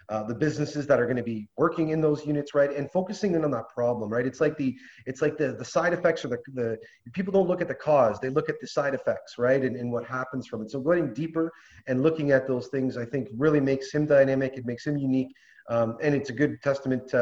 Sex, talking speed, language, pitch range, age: male, 260 wpm, English, 130-165 Hz, 30-49